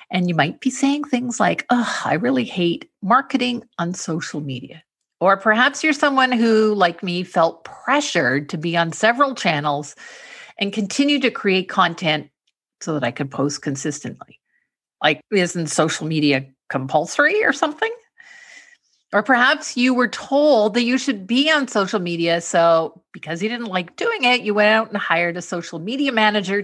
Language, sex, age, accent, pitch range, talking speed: English, female, 50-69, American, 165-255 Hz, 170 wpm